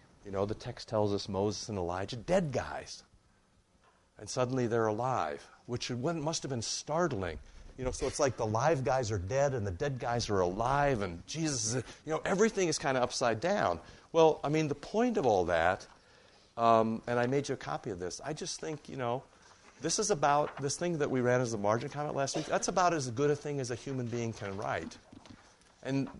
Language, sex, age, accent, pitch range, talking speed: English, male, 50-69, American, 95-135 Hz, 220 wpm